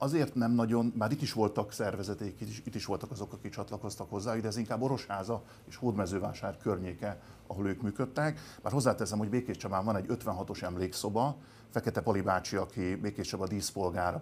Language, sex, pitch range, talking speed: Hungarian, male, 100-115 Hz, 170 wpm